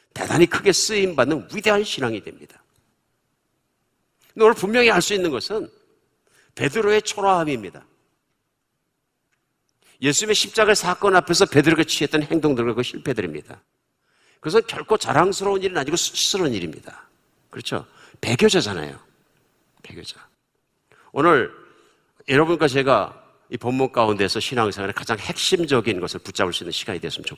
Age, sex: 50-69, male